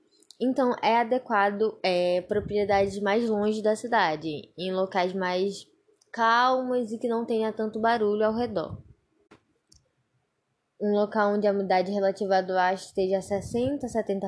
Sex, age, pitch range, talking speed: female, 10-29, 195-235 Hz, 135 wpm